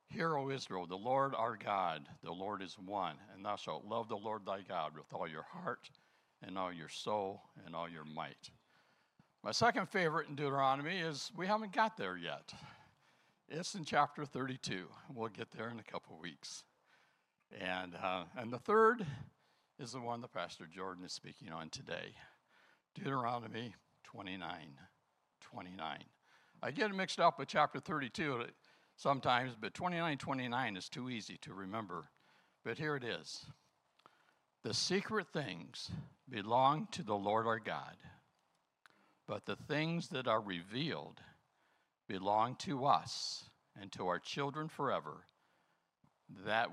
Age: 60-79